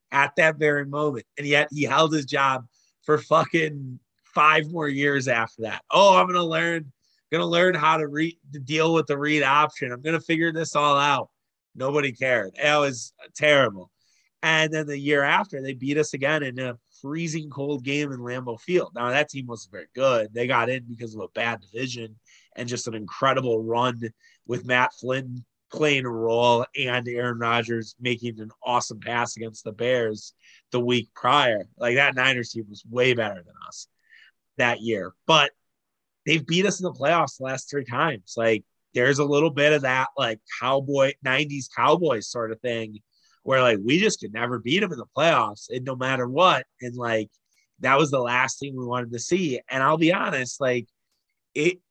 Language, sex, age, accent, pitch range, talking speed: English, male, 30-49, American, 120-150 Hz, 190 wpm